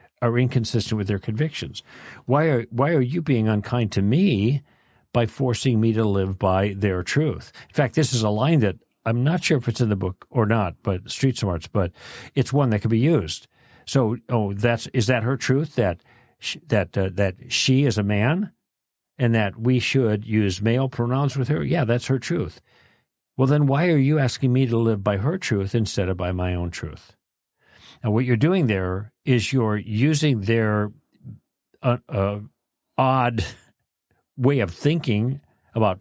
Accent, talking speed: American, 185 wpm